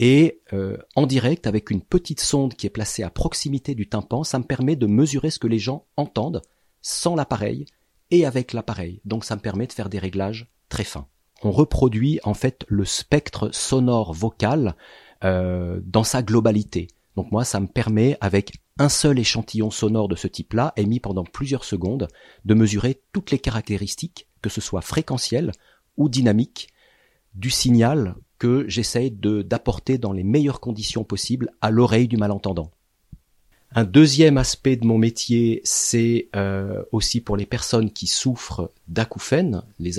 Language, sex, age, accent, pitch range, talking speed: French, male, 40-59, French, 95-125 Hz, 165 wpm